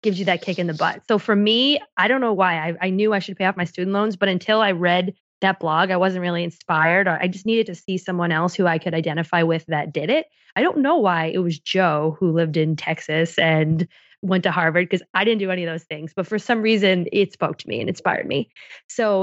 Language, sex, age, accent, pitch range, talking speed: English, female, 20-39, American, 170-200 Hz, 260 wpm